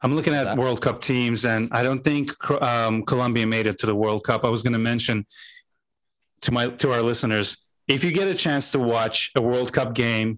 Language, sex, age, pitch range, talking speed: English, male, 30-49, 115-135 Hz, 225 wpm